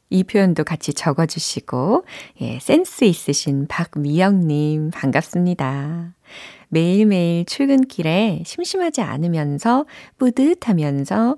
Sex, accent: female, native